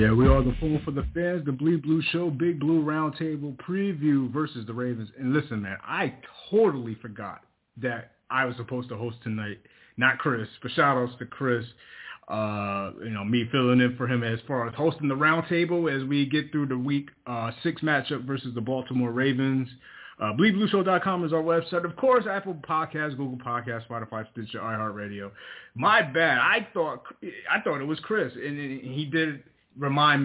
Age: 30-49